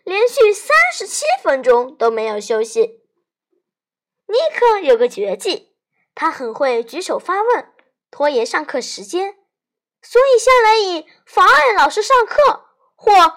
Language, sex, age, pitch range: Chinese, female, 10-29, 290-475 Hz